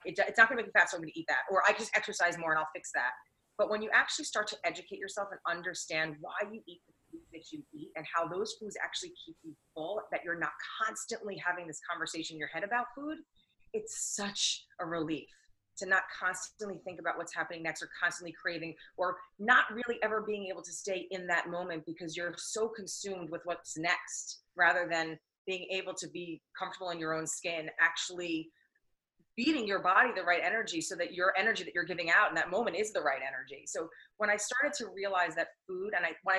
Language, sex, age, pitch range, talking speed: English, female, 30-49, 165-210 Hz, 225 wpm